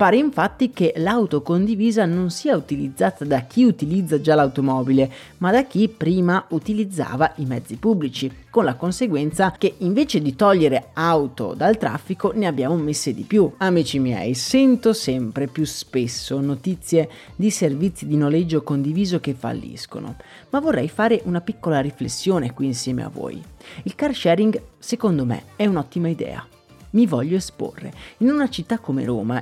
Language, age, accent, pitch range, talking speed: Italian, 40-59, native, 150-225 Hz, 155 wpm